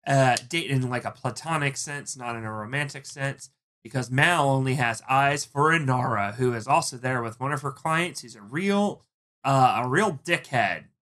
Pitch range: 125-155 Hz